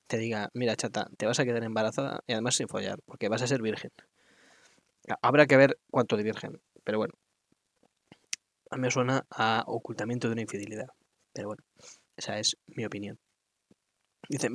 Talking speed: 175 wpm